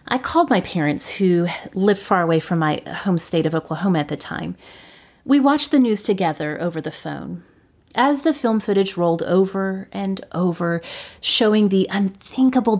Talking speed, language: 170 wpm, English